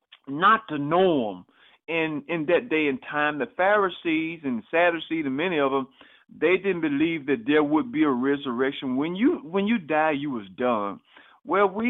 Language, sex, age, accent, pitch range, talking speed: English, male, 50-69, American, 155-220 Hz, 185 wpm